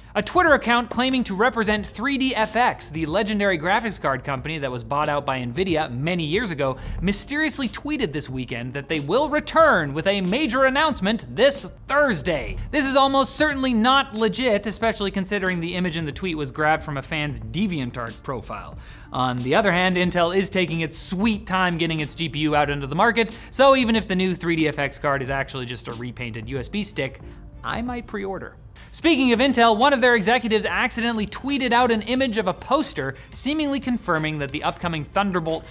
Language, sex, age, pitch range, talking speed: English, male, 30-49, 150-235 Hz, 185 wpm